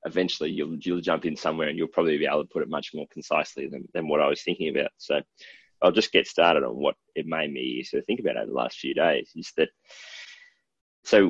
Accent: Australian